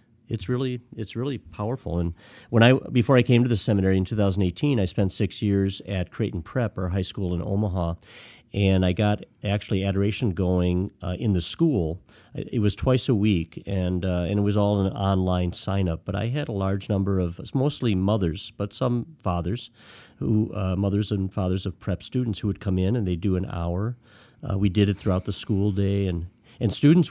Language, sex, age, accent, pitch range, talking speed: English, male, 40-59, American, 90-110 Hz, 205 wpm